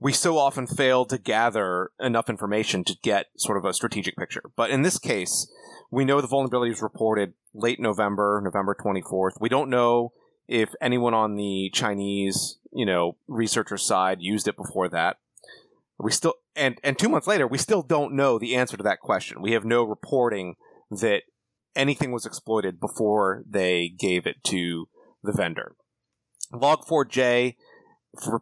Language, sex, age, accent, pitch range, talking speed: English, male, 30-49, American, 110-140 Hz, 170 wpm